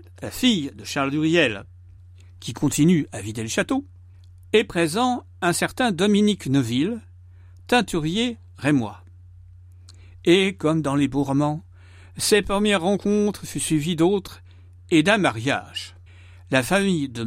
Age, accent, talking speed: 60-79, French, 120 wpm